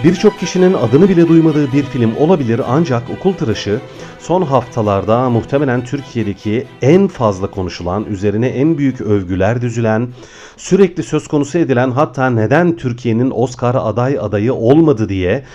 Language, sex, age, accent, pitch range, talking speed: Turkish, male, 40-59, native, 110-165 Hz, 135 wpm